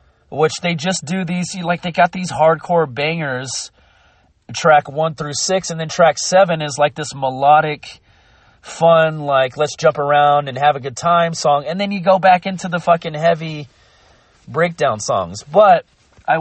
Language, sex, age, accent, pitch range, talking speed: English, male, 30-49, American, 140-190 Hz, 170 wpm